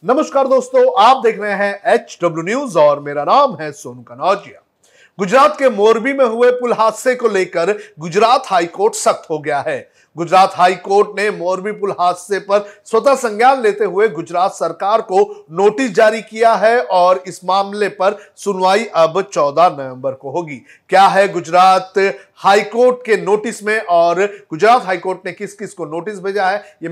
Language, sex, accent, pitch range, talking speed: Hindi, male, native, 175-220 Hz, 175 wpm